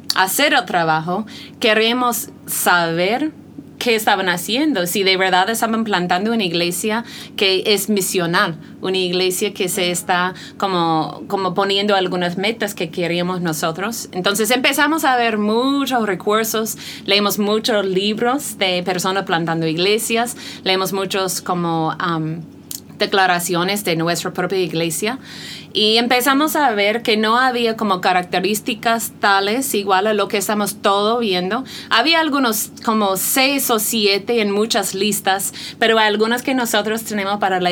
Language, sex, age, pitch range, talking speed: English, female, 30-49, 185-225 Hz, 135 wpm